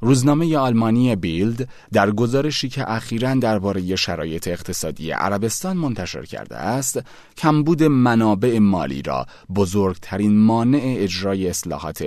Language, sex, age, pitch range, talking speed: Persian, male, 30-49, 85-120 Hz, 110 wpm